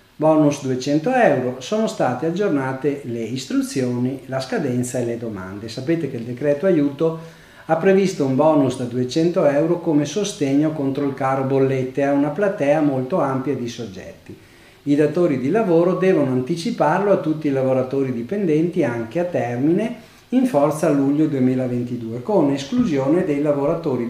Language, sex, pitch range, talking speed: Italian, male, 125-160 Hz, 150 wpm